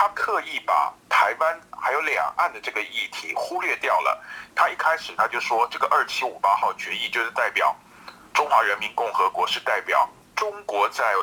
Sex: male